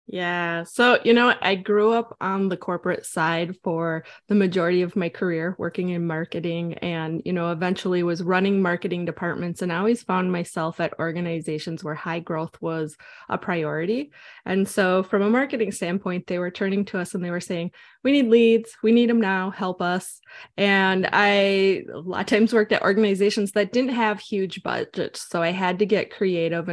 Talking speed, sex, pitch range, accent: 190 wpm, female, 170-200 Hz, American